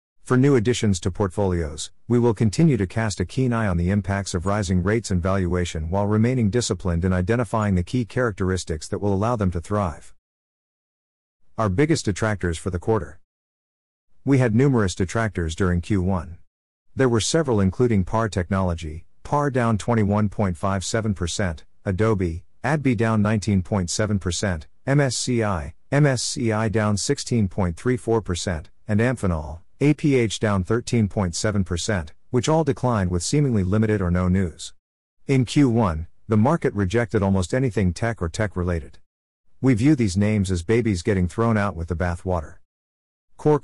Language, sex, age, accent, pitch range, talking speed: English, male, 50-69, American, 90-115 Hz, 140 wpm